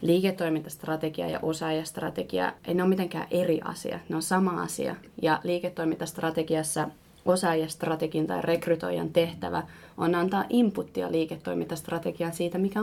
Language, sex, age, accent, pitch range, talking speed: Finnish, female, 20-39, native, 160-180 Hz, 115 wpm